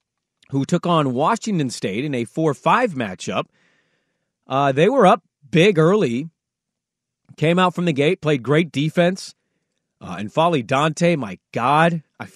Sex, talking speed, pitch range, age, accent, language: male, 145 wpm, 140-170 Hz, 30-49, American, English